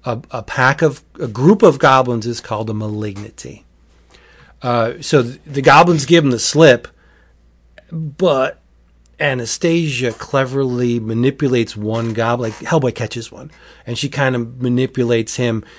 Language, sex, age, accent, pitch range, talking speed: English, male, 40-59, American, 105-135 Hz, 140 wpm